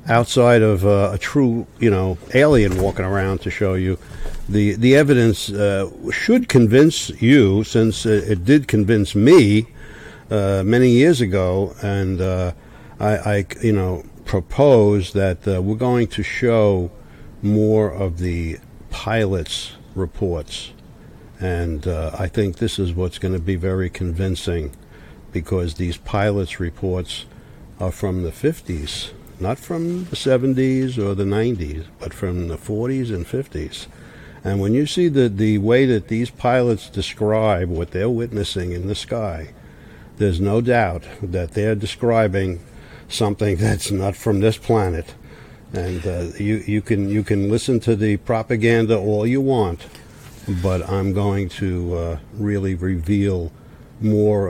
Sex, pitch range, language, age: male, 95-115 Hz, English, 60-79